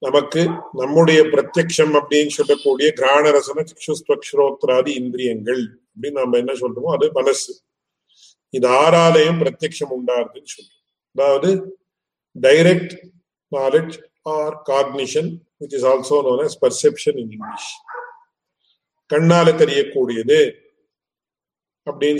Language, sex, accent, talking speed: English, male, Indian, 95 wpm